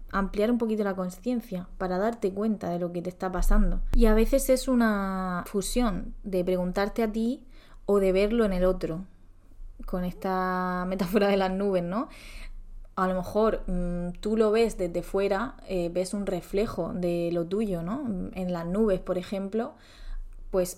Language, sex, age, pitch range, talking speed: Spanish, female, 20-39, 180-210 Hz, 170 wpm